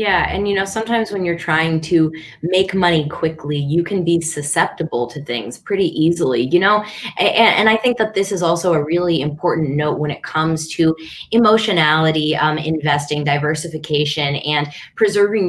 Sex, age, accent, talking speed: female, 20-39, American, 170 wpm